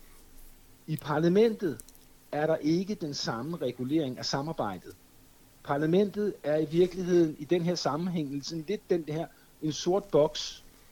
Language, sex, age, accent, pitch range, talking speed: Danish, male, 60-79, native, 125-165 Hz, 125 wpm